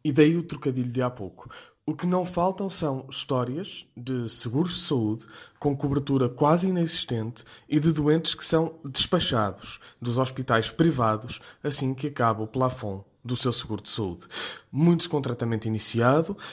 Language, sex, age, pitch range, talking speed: Portuguese, male, 20-39, 120-155 Hz, 160 wpm